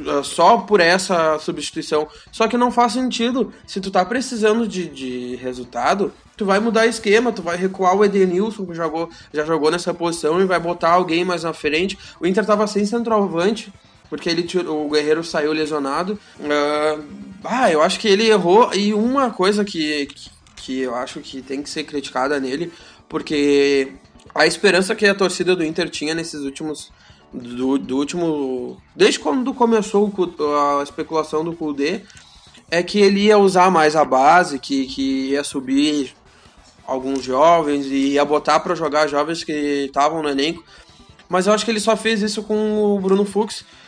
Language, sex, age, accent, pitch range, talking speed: Portuguese, male, 20-39, Brazilian, 150-205 Hz, 170 wpm